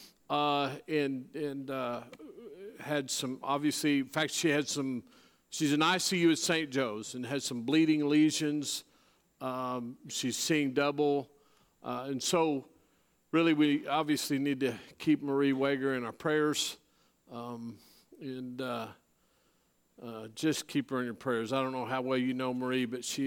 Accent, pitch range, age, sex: American, 125-145 Hz, 50-69, male